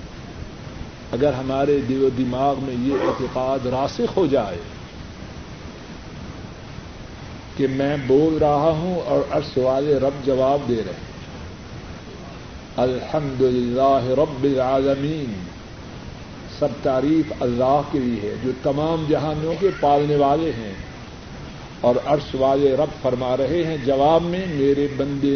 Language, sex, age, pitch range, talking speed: Urdu, male, 60-79, 135-170 Hz, 115 wpm